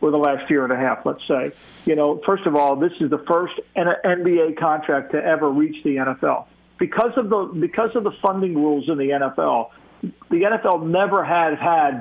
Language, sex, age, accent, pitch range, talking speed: English, male, 50-69, American, 155-195 Hz, 210 wpm